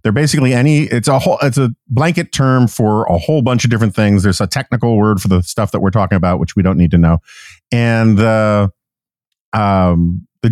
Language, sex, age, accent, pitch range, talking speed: English, male, 40-59, American, 95-120 Hz, 215 wpm